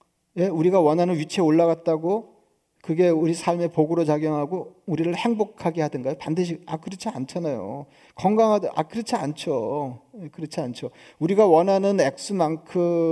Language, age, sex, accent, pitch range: Korean, 40-59, male, native, 150-180 Hz